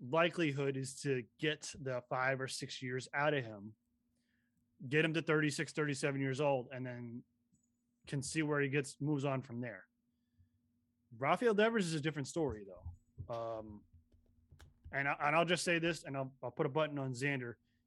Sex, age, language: male, 20-39, English